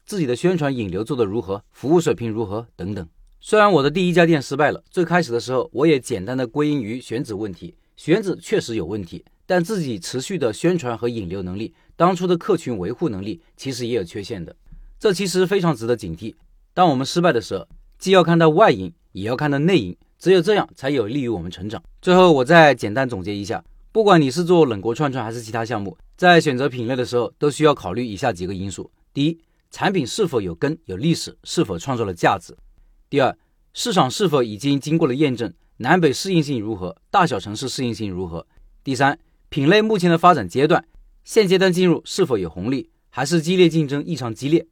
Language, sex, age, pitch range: Chinese, male, 40-59, 115-170 Hz